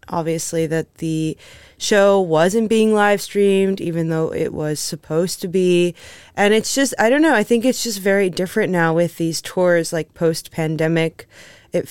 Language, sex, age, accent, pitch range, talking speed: English, female, 20-39, American, 160-190 Hz, 175 wpm